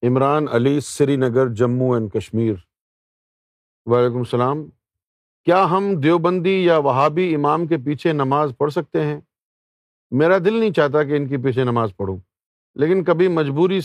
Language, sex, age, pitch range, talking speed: Urdu, male, 50-69, 120-175 Hz, 145 wpm